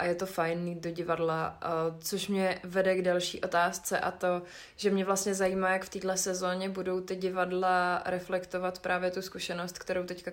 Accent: native